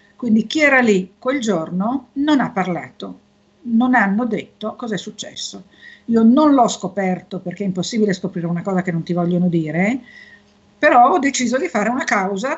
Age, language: 50-69, Italian